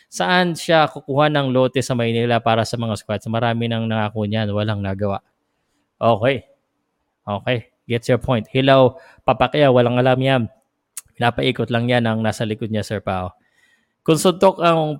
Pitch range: 115-140 Hz